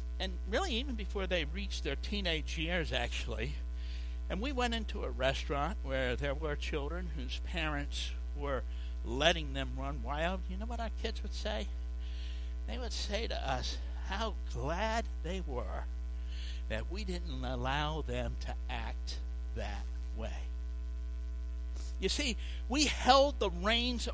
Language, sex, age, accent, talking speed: English, male, 60-79, American, 145 wpm